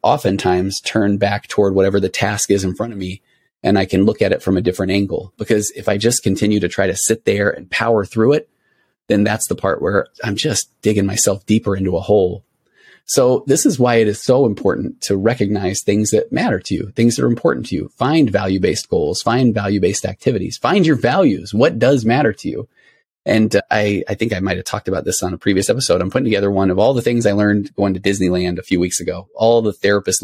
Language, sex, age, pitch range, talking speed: English, male, 30-49, 95-110 Hz, 235 wpm